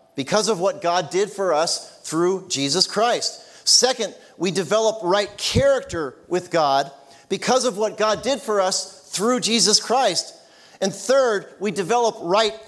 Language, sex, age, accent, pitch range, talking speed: English, male, 50-69, American, 155-220 Hz, 150 wpm